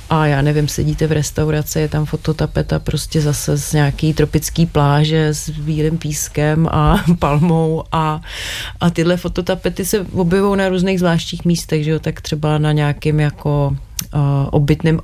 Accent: native